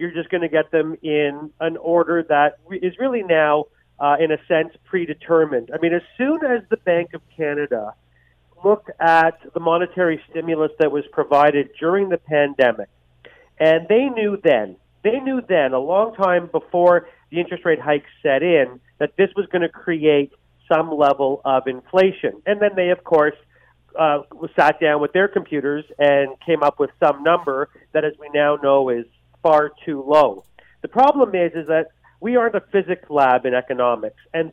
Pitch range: 145-185 Hz